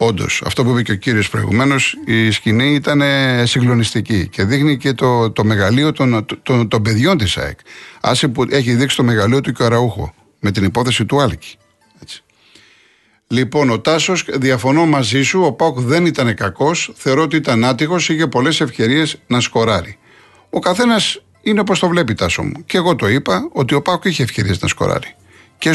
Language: Greek